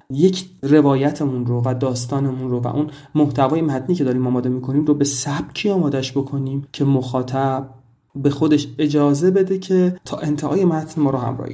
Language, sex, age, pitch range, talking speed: Persian, male, 30-49, 130-155 Hz, 170 wpm